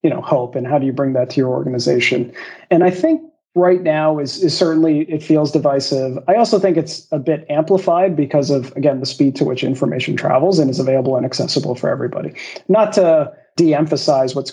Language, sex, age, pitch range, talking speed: English, male, 40-59, 140-170 Hz, 205 wpm